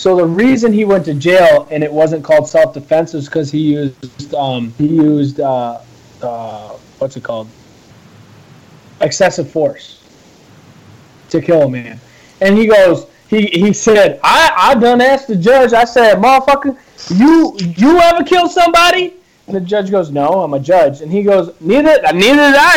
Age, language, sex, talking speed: 20-39, English, male, 170 wpm